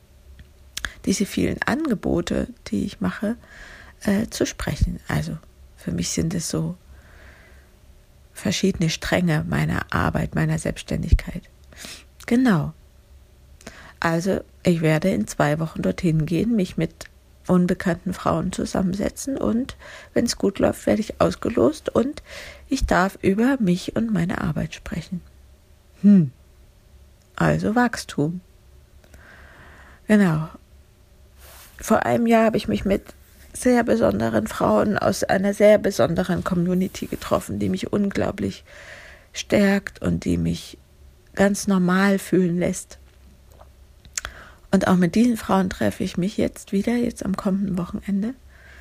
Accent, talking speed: German, 120 wpm